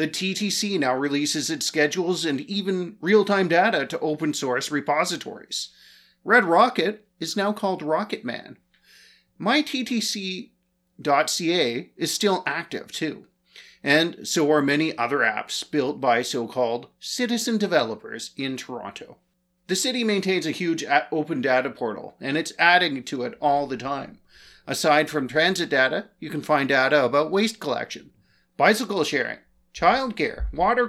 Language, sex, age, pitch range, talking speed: English, male, 40-59, 135-185 Hz, 130 wpm